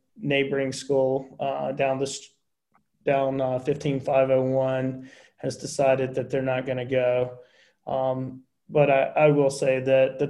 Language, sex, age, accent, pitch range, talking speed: English, male, 30-49, American, 130-140 Hz, 135 wpm